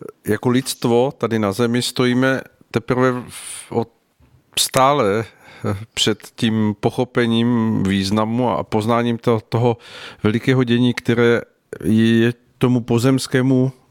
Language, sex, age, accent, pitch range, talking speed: Czech, male, 50-69, native, 105-120 Hz, 95 wpm